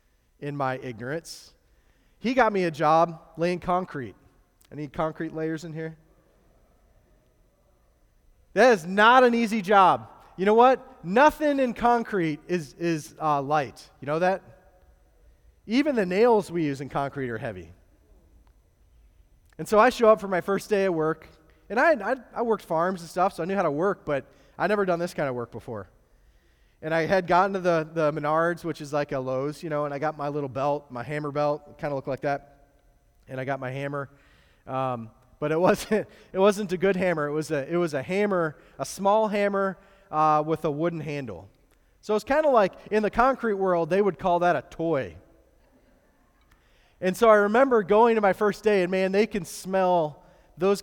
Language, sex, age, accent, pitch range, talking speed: English, male, 30-49, American, 140-195 Hz, 195 wpm